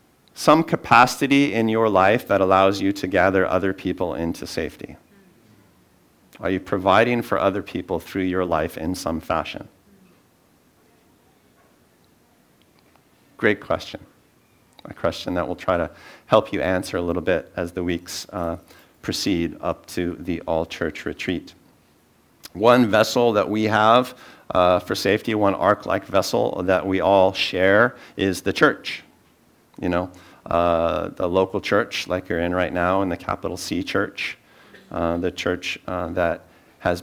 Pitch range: 90-100 Hz